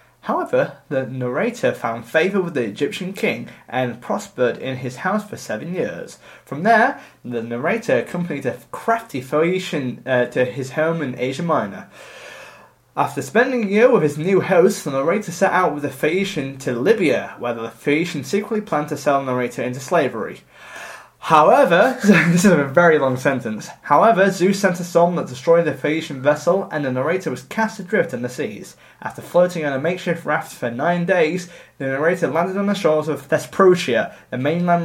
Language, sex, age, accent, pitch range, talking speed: English, male, 20-39, British, 135-185 Hz, 180 wpm